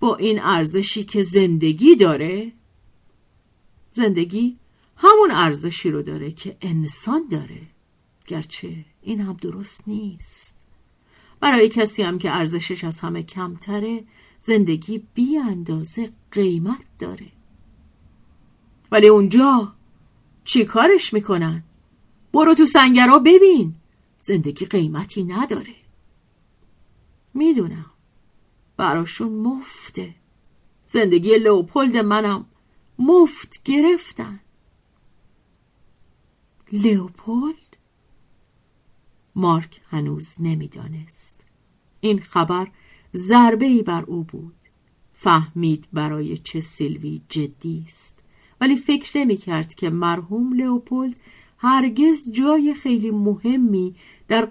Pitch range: 165-240 Hz